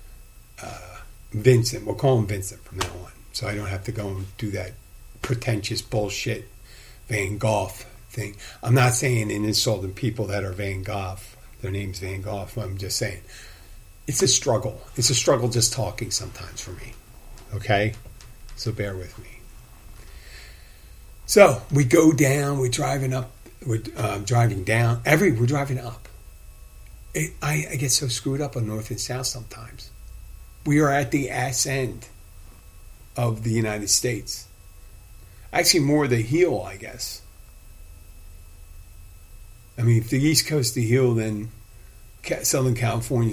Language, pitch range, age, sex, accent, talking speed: English, 95-120 Hz, 50-69, male, American, 155 wpm